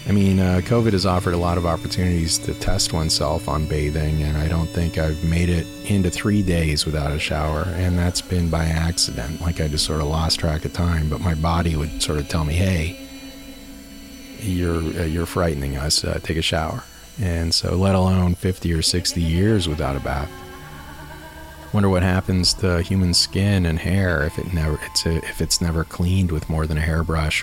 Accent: American